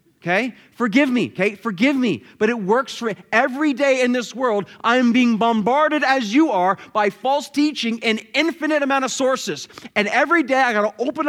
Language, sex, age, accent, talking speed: English, male, 30-49, American, 185 wpm